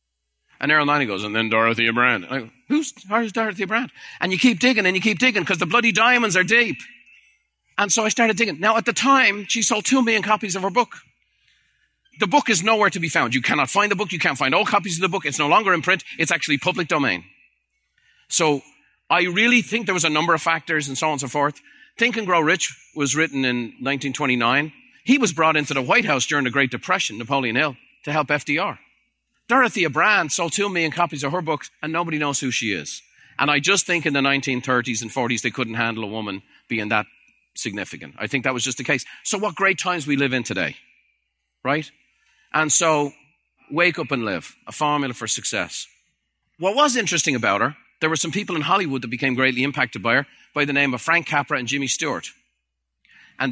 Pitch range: 130-195 Hz